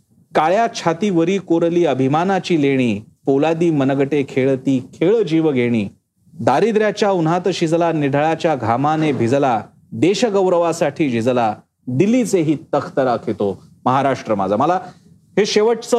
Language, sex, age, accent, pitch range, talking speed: Marathi, male, 40-59, native, 130-175 Hz, 115 wpm